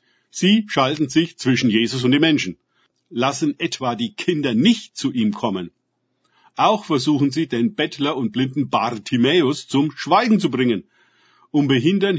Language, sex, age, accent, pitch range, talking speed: German, male, 50-69, German, 120-165 Hz, 150 wpm